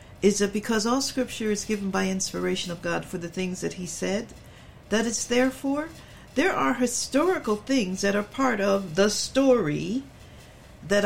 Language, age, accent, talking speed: English, 60-79, American, 175 wpm